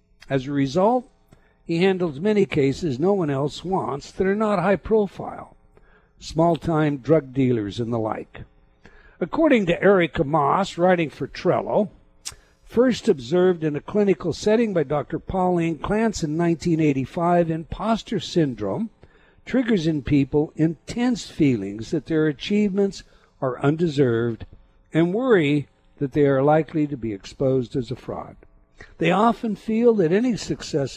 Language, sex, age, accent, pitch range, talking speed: English, male, 60-79, American, 140-190 Hz, 135 wpm